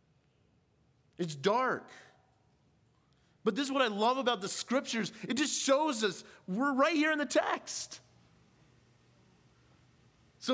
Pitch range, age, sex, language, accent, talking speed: 205-255 Hz, 40-59, male, English, American, 125 wpm